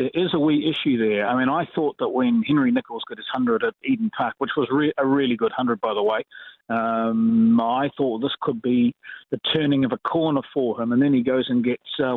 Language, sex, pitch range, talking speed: English, male, 125-190 Hz, 250 wpm